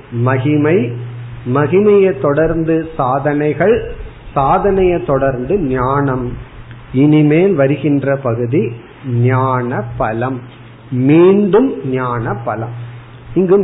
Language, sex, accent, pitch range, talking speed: Tamil, male, native, 125-165 Hz, 55 wpm